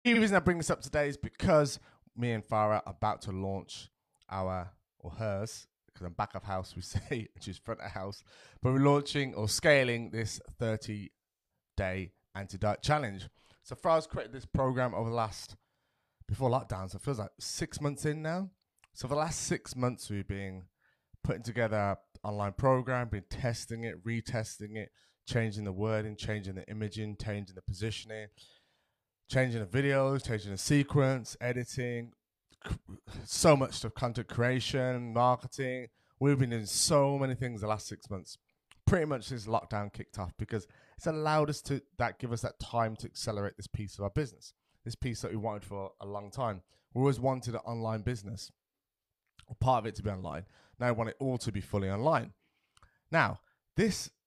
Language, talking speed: English, 180 wpm